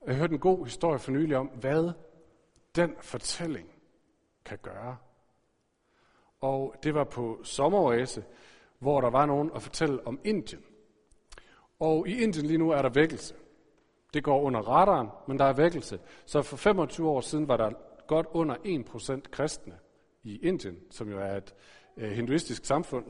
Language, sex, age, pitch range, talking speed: Danish, male, 50-69, 120-160 Hz, 160 wpm